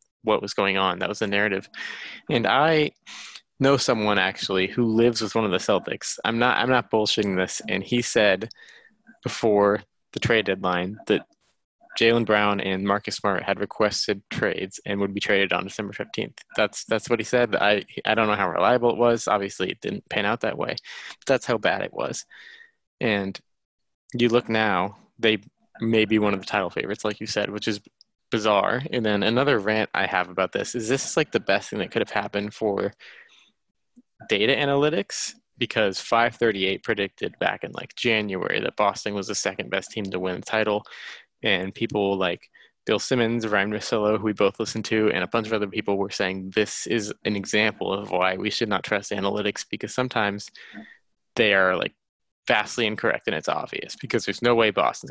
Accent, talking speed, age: American, 195 wpm, 20-39